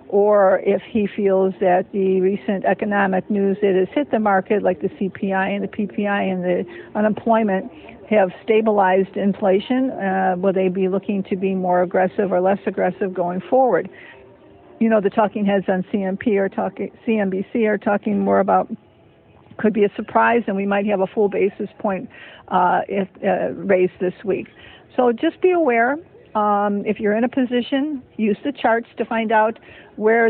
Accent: American